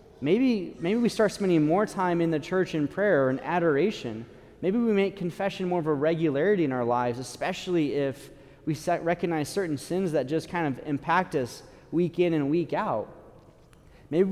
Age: 30-49